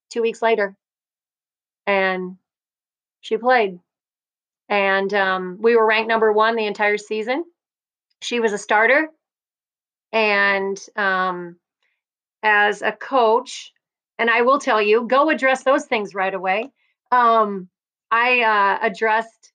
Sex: female